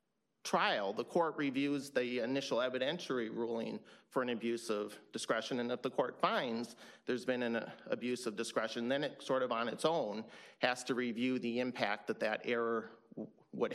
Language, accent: English, American